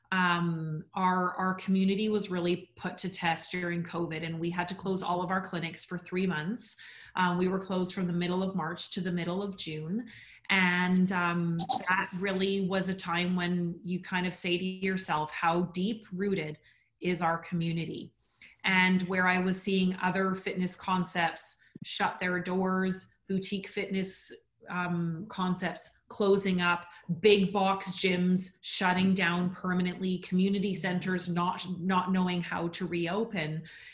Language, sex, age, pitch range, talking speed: English, female, 30-49, 175-190 Hz, 155 wpm